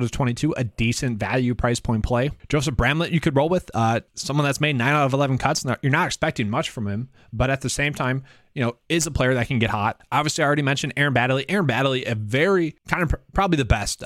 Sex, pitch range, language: male, 115-155 Hz, English